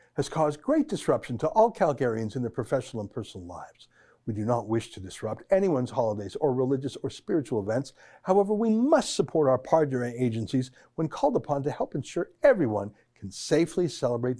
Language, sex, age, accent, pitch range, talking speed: English, male, 60-79, American, 120-170 Hz, 180 wpm